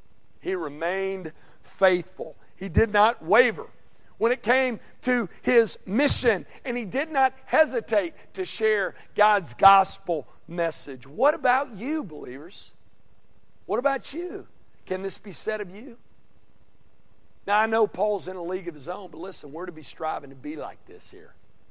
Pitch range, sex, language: 175-250 Hz, male, English